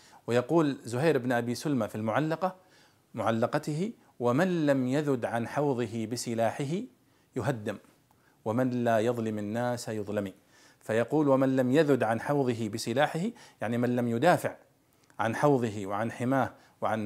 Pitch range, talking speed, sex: 115-150 Hz, 125 wpm, male